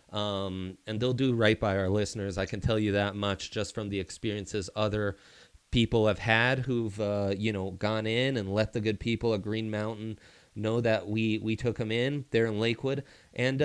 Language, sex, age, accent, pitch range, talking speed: English, male, 30-49, American, 110-150 Hz, 205 wpm